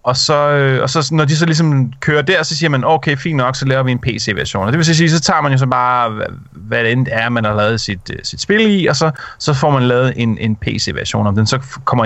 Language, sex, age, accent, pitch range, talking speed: Danish, male, 30-49, native, 115-150 Hz, 270 wpm